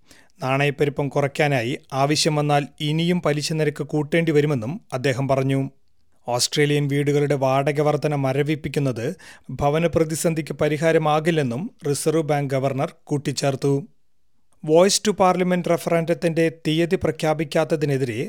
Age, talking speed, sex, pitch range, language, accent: 30-49, 80 wpm, male, 140-160 Hz, Malayalam, native